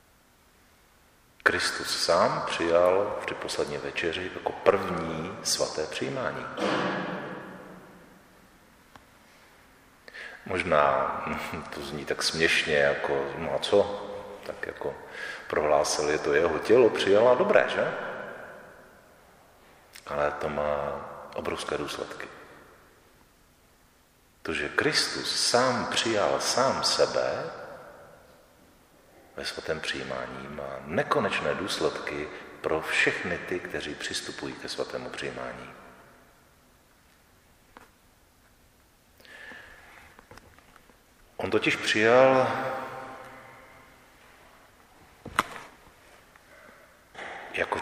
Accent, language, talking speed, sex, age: native, Czech, 75 wpm, male, 50-69